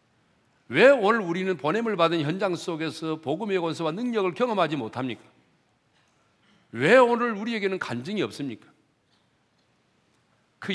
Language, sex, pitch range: Korean, male, 170-230 Hz